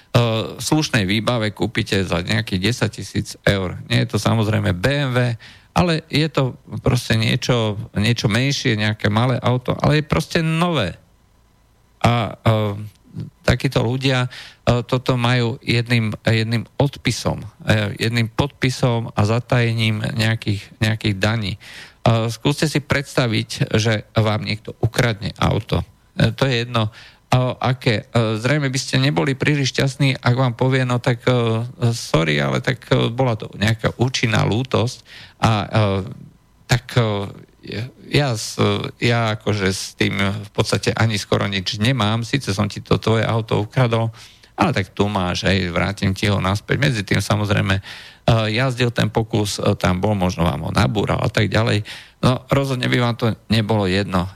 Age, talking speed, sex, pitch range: 40-59, 145 wpm, male, 105-125 Hz